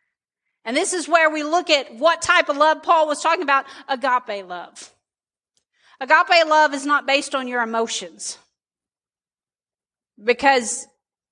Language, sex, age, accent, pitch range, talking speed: English, female, 40-59, American, 230-295 Hz, 140 wpm